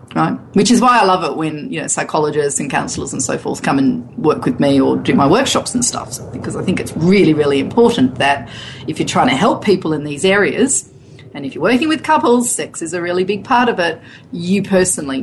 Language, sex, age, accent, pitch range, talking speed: English, female, 40-59, Australian, 185-250 Hz, 240 wpm